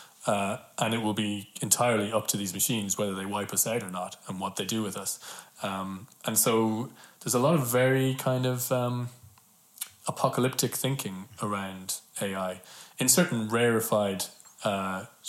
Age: 20-39